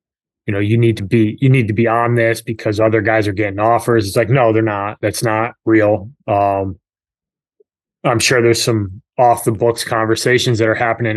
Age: 20-39